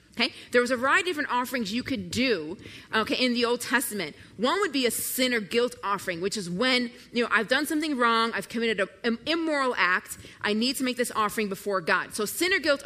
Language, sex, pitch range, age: English, female, 190-255 Hz, 30-49